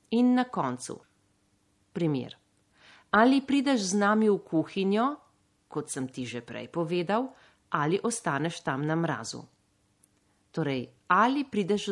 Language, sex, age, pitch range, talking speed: Italian, female, 40-59, 125-205 Hz, 120 wpm